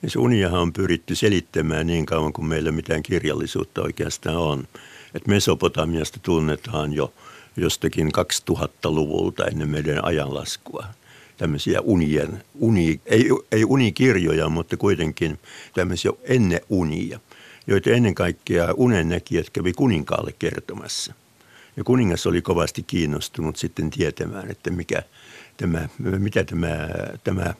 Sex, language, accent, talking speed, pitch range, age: male, Finnish, native, 115 wpm, 80-105 Hz, 60-79